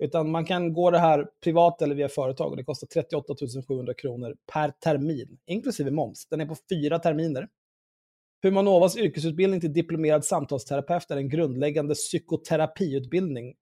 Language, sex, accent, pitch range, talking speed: Swedish, male, native, 145-180 Hz, 150 wpm